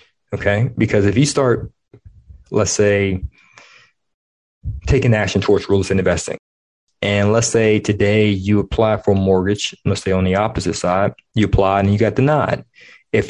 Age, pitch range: 20-39, 100-120 Hz